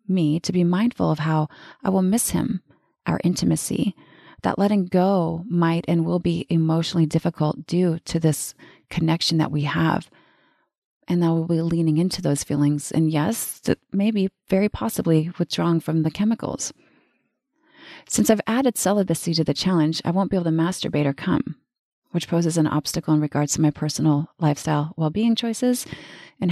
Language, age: English, 30-49